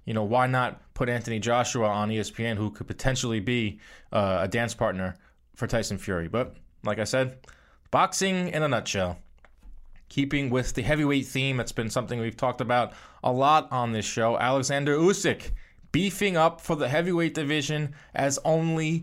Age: 20-39